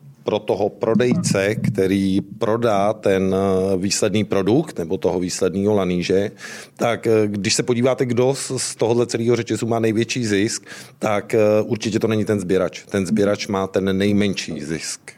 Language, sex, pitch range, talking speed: Czech, male, 95-110 Hz, 140 wpm